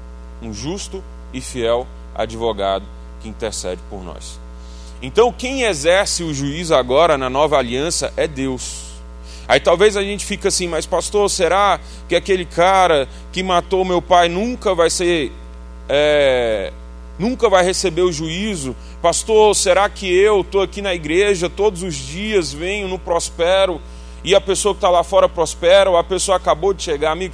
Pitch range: 125-170 Hz